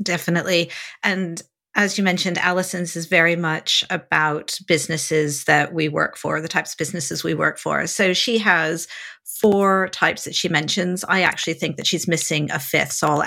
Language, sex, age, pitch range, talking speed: English, female, 40-59, 155-185 Hz, 180 wpm